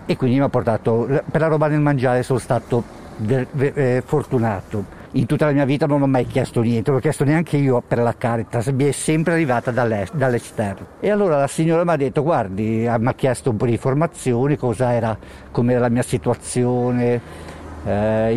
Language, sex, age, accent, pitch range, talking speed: Italian, male, 50-69, native, 115-145 Hz, 195 wpm